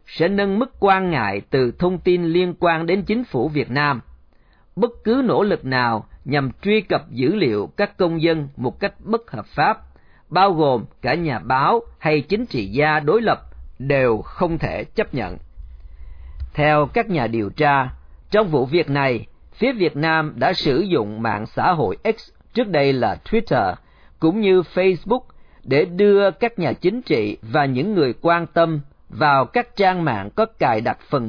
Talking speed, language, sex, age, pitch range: 180 wpm, Vietnamese, male, 40-59, 130-195 Hz